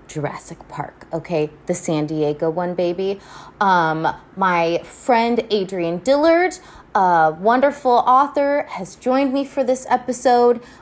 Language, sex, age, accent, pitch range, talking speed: English, female, 20-39, American, 170-225 Hz, 120 wpm